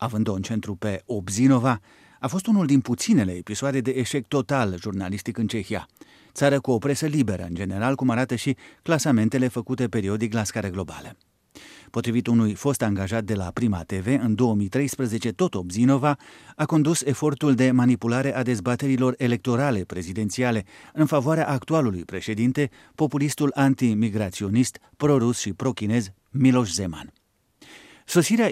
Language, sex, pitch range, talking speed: Romanian, male, 110-140 Hz, 140 wpm